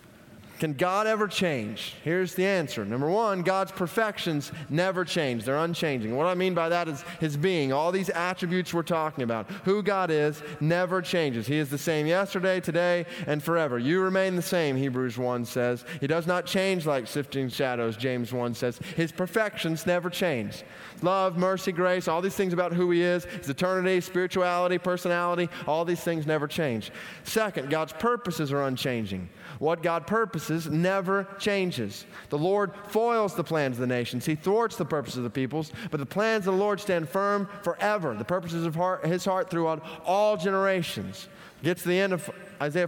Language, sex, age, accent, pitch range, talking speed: English, male, 20-39, American, 155-190 Hz, 185 wpm